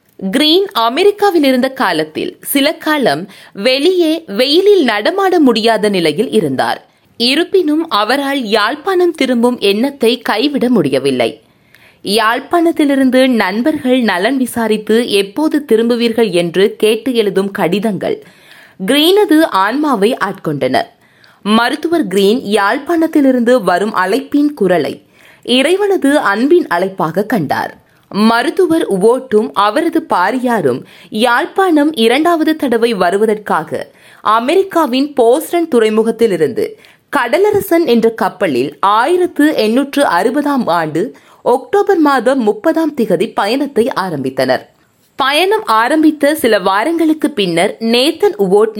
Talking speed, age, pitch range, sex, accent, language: 90 wpm, 20-39, 215-310 Hz, female, native, Tamil